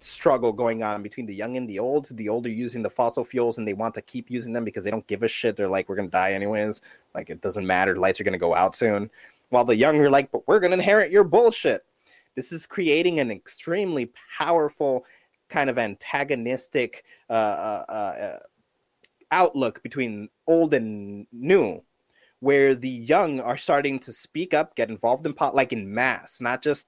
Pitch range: 120-170 Hz